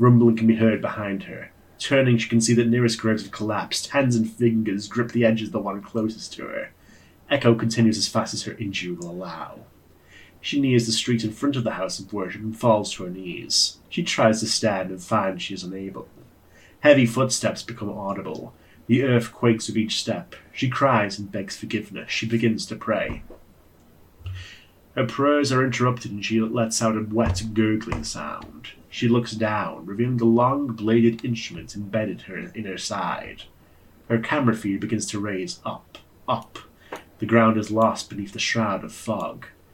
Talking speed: 185 wpm